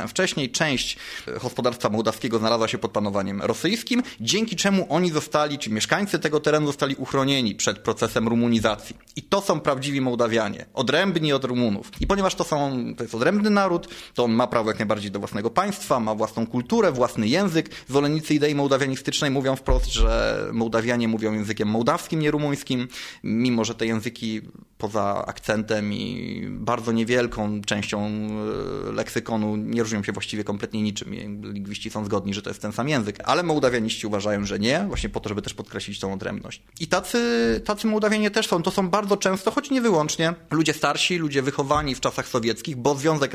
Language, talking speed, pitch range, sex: Polish, 175 wpm, 110-155 Hz, male